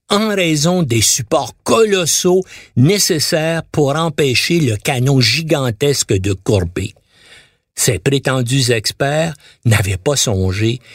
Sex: male